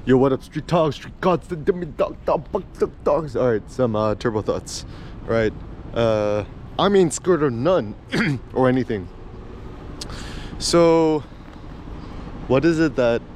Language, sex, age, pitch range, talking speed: English, male, 20-39, 110-150 Hz, 155 wpm